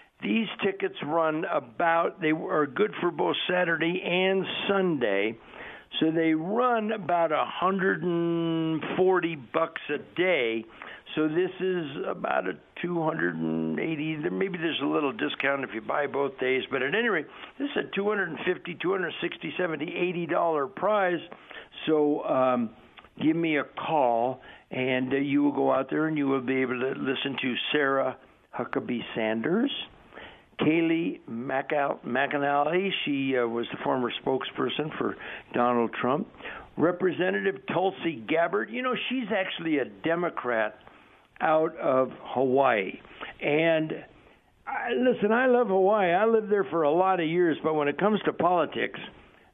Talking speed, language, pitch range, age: 135 wpm, English, 135-180 Hz, 60-79